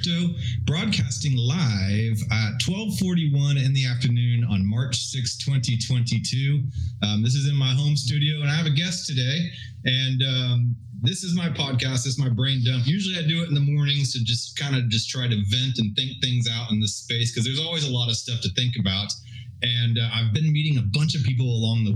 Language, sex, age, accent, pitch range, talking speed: English, male, 30-49, American, 110-135 Hz, 215 wpm